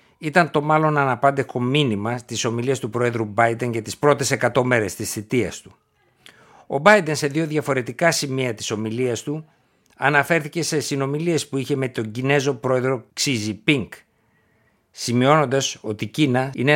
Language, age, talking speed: Greek, 60-79, 155 wpm